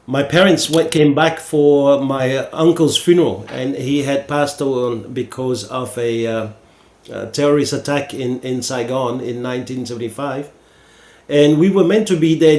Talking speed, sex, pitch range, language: 155 wpm, male, 140-165 Hz, English